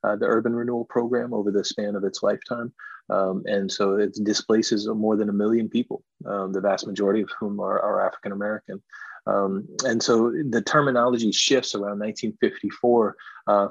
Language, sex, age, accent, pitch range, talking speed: English, male, 30-49, American, 100-115 Hz, 170 wpm